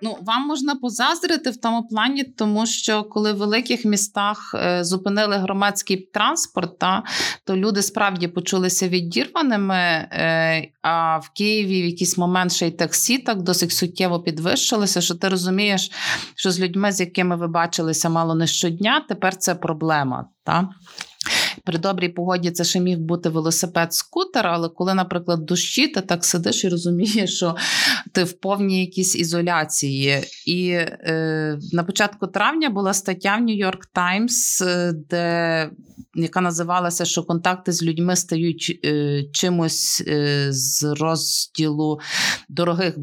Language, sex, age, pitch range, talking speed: Ukrainian, female, 30-49, 165-200 Hz, 140 wpm